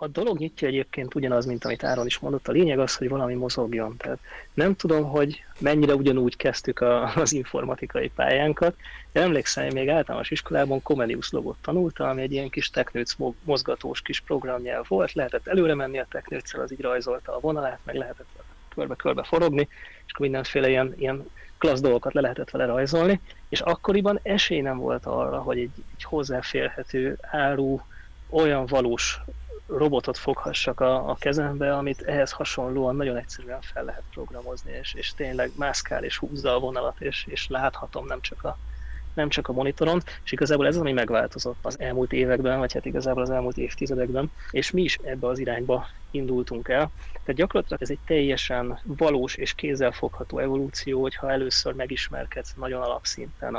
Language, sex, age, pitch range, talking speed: Hungarian, male, 30-49, 125-145 Hz, 170 wpm